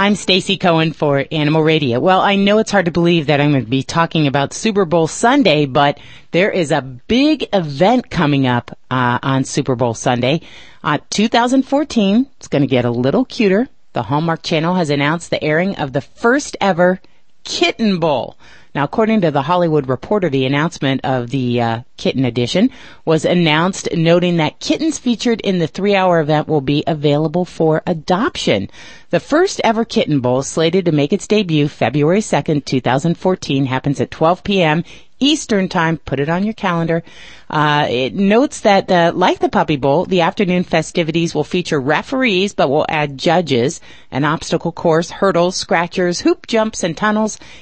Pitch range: 145-210 Hz